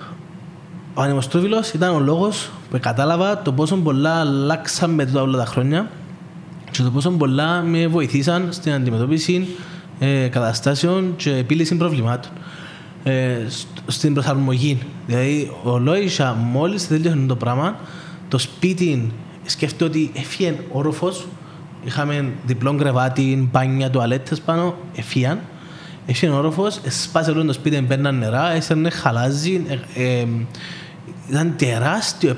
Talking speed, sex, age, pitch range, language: 105 wpm, male, 20-39, 140-175 Hz, Greek